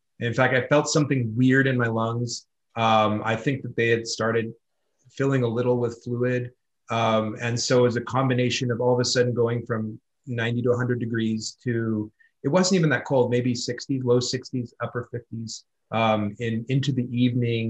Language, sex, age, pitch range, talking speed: English, male, 30-49, 110-130 Hz, 185 wpm